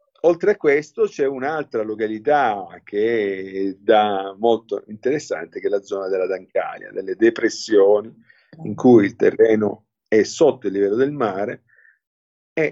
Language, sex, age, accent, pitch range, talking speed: Italian, male, 50-69, native, 105-130 Hz, 135 wpm